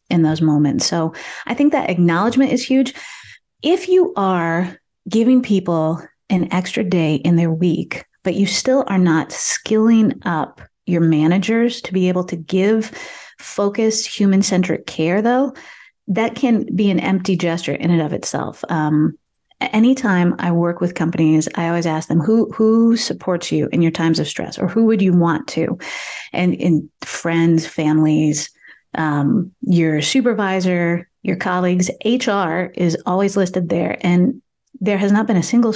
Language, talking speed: English, 160 wpm